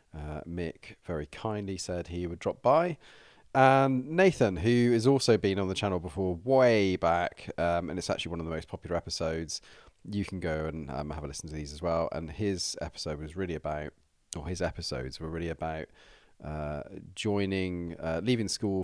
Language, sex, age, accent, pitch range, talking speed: English, male, 40-59, British, 80-100 Hz, 190 wpm